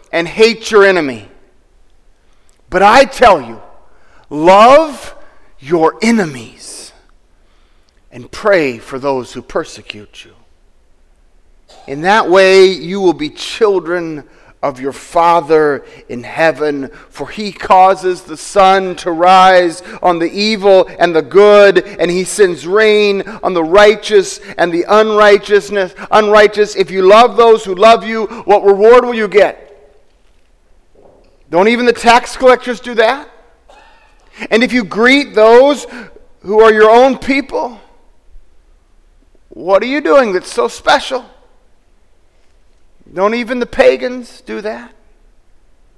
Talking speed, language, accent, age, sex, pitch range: 125 wpm, English, American, 40-59, male, 135-225 Hz